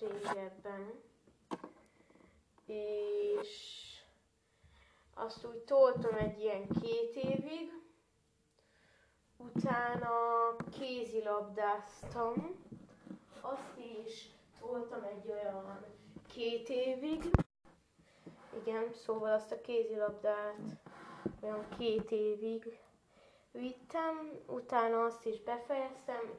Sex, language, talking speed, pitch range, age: female, Hungarian, 70 wpm, 210-240 Hz, 20-39